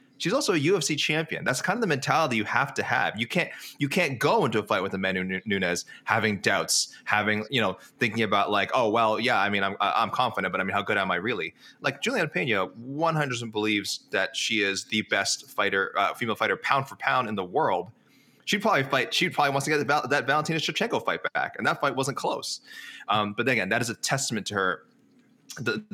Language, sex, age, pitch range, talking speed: English, male, 20-39, 100-140 Hz, 225 wpm